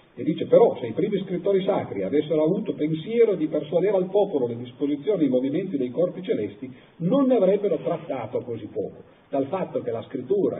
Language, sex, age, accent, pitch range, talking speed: Italian, male, 50-69, native, 120-195 Hz, 195 wpm